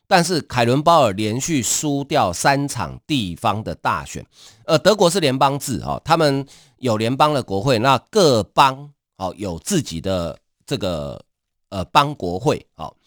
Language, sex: Chinese, male